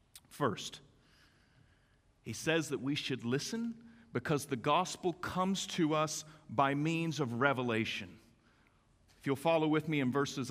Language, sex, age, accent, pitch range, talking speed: English, male, 40-59, American, 150-215 Hz, 135 wpm